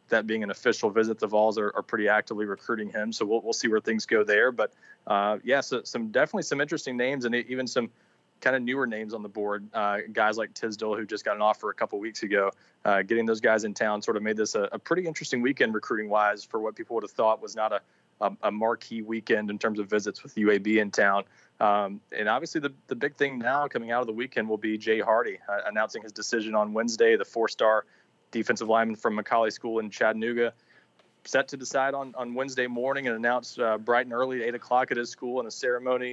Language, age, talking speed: English, 20-39, 240 wpm